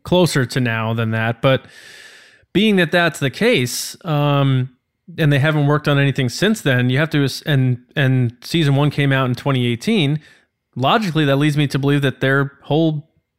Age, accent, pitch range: 20-39, American, 125-155 Hz